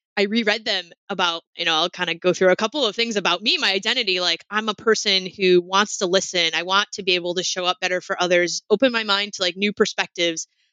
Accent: American